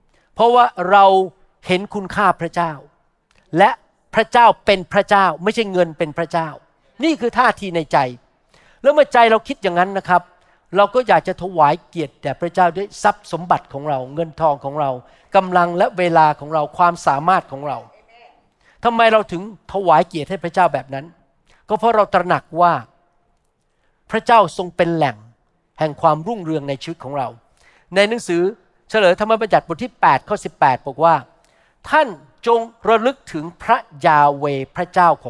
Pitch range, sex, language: 160-225 Hz, male, Thai